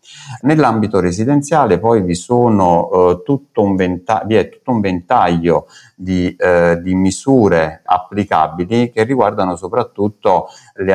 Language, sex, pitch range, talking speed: Italian, male, 85-105 Hz, 110 wpm